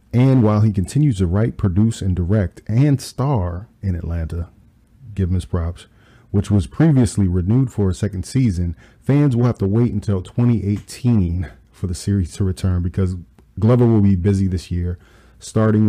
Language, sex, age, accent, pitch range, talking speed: English, male, 40-59, American, 90-110 Hz, 170 wpm